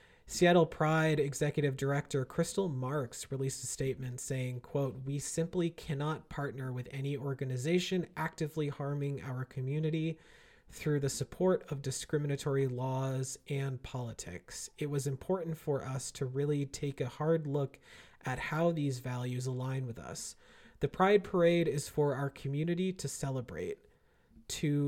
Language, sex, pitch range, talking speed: English, male, 135-155 Hz, 140 wpm